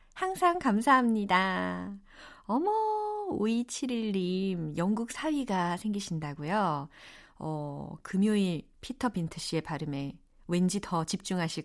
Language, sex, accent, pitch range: Korean, female, native, 170-270 Hz